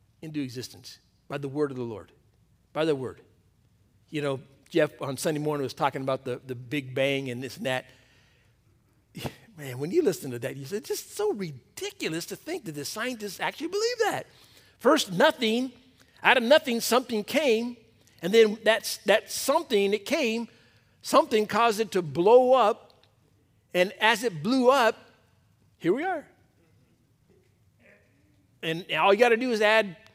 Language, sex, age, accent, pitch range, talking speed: English, male, 50-69, American, 130-215 Hz, 165 wpm